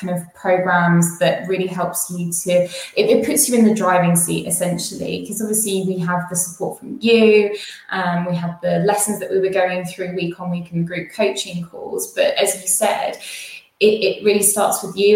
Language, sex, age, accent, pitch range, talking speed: English, female, 20-39, British, 180-205 Hz, 210 wpm